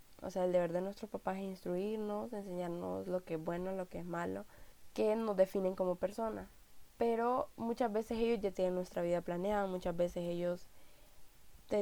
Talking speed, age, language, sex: 185 wpm, 10-29, Spanish, female